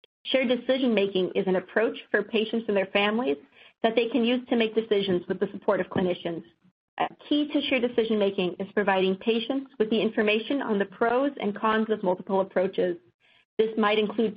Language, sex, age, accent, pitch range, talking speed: English, female, 40-59, American, 200-245 Hz, 185 wpm